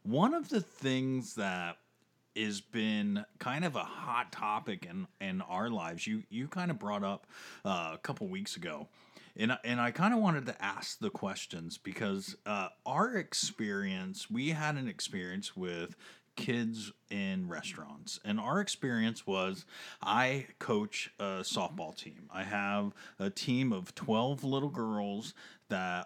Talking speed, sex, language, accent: 155 wpm, male, English, American